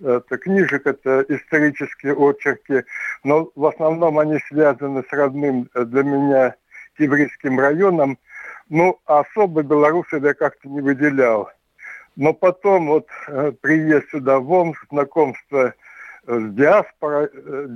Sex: male